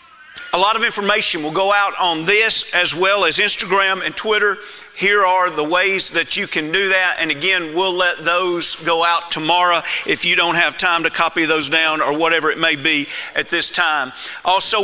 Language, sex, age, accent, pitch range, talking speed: English, male, 40-59, American, 160-200 Hz, 200 wpm